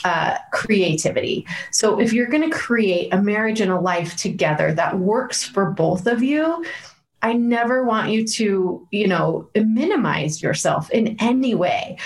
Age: 30-49